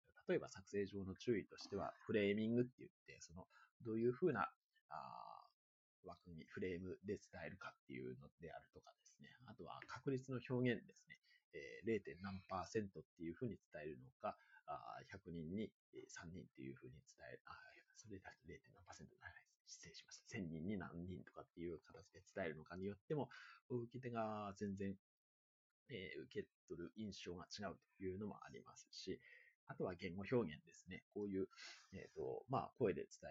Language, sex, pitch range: Japanese, male, 95-135 Hz